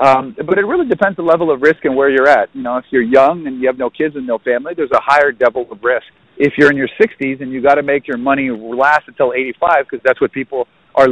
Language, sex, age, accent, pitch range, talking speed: English, male, 50-69, American, 130-150 Hz, 280 wpm